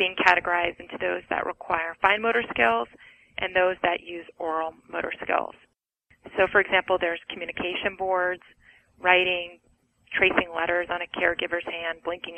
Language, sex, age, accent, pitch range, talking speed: English, female, 30-49, American, 175-205 Hz, 145 wpm